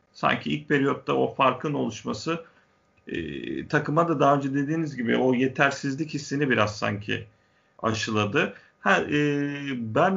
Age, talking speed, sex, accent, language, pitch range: 40-59, 130 wpm, male, native, Turkish, 120-145 Hz